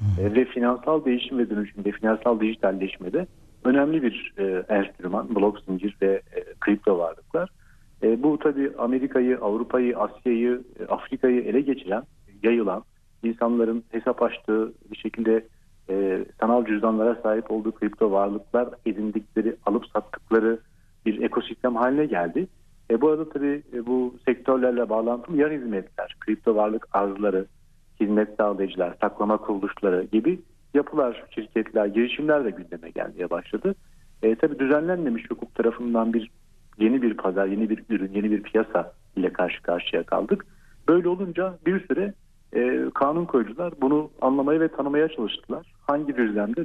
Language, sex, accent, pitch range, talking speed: Turkish, male, native, 105-135 Hz, 135 wpm